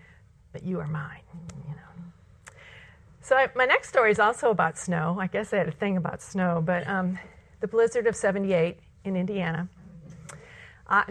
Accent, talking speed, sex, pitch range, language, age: American, 175 wpm, female, 180-230 Hz, English, 40-59